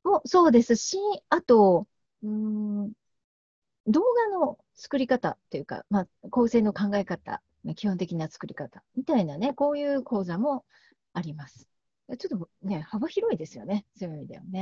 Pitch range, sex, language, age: 165-230 Hz, female, Japanese, 40-59